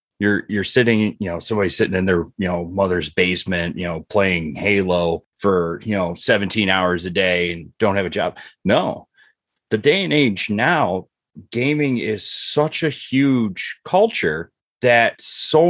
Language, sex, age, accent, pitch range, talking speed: English, male, 30-49, American, 95-125 Hz, 165 wpm